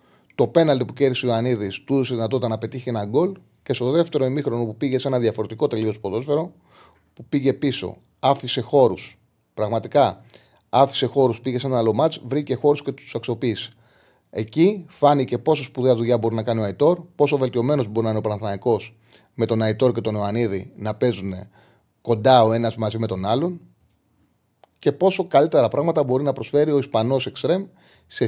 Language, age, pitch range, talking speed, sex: Greek, 30-49, 110-145 Hz, 180 wpm, male